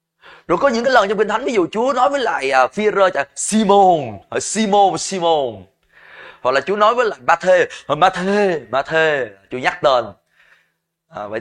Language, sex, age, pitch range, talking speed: Vietnamese, male, 20-39, 165-230 Hz, 190 wpm